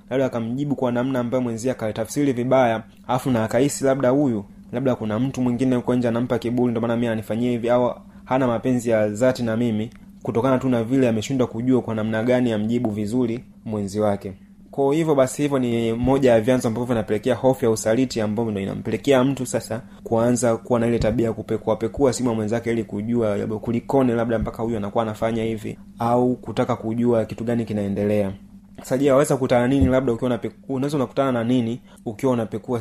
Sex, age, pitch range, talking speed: male, 30-49, 115-130 Hz, 185 wpm